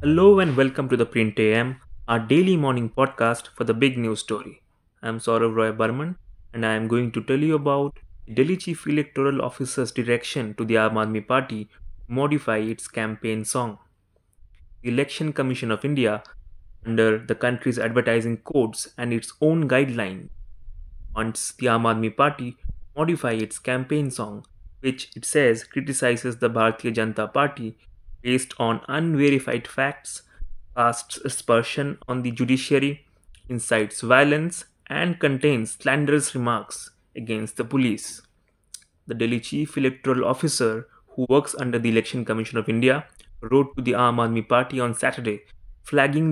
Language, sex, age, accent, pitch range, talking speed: English, male, 20-39, Indian, 110-135 Hz, 150 wpm